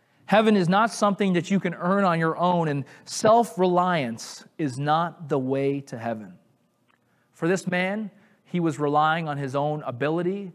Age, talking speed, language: 30-49, 165 wpm, English